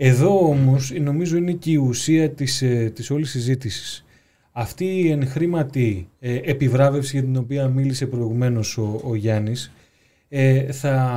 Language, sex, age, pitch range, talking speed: Greek, male, 30-49, 125-155 Hz, 135 wpm